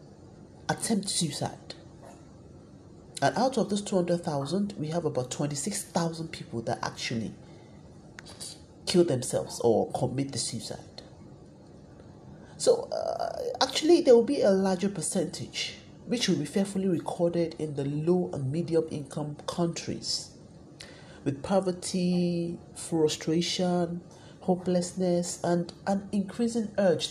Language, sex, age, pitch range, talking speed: English, male, 40-59, 160-200 Hz, 110 wpm